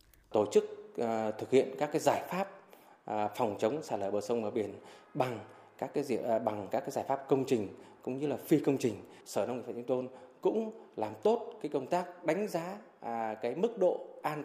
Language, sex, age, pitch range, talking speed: Vietnamese, male, 20-39, 125-175 Hz, 220 wpm